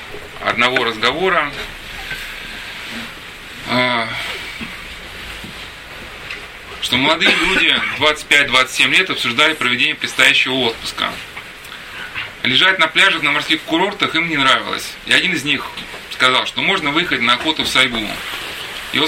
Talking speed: 105 wpm